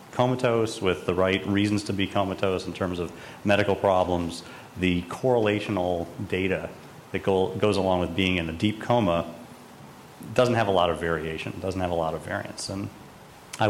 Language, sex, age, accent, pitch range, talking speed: English, male, 40-59, American, 85-105 Hz, 175 wpm